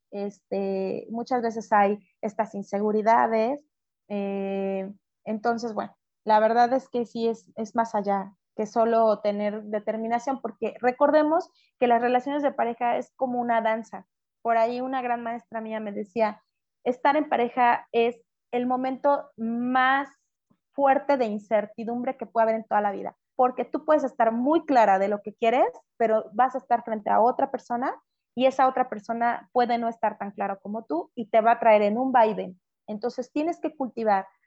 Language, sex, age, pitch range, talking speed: Spanish, female, 20-39, 215-255 Hz, 170 wpm